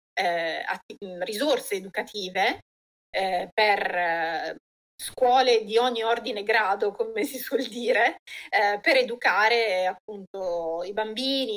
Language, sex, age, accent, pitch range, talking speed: Italian, female, 30-49, native, 185-230 Hz, 105 wpm